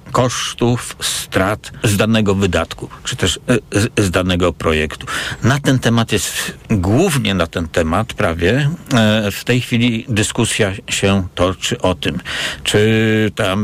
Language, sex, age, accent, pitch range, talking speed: Polish, male, 60-79, native, 85-110 Hz, 130 wpm